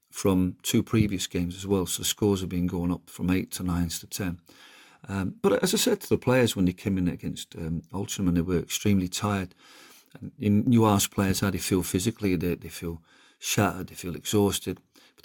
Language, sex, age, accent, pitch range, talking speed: English, male, 40-59, British, 90-105 Hz, 215 wpm